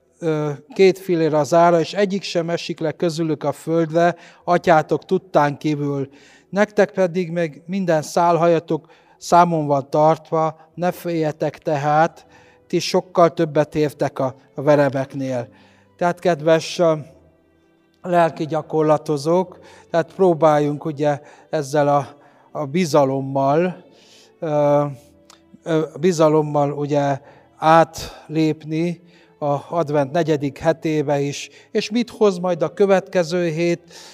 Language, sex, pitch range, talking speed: Hungarian, male, 150-175 Hz, 100 wpm